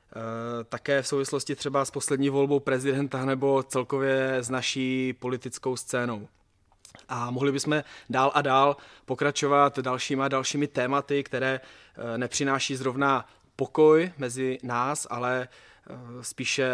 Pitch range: 120-140 Hz